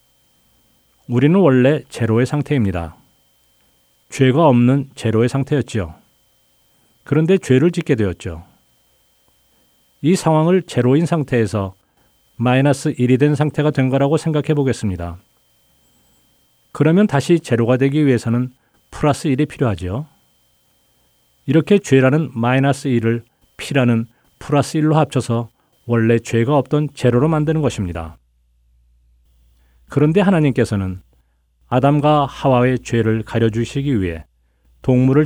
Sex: male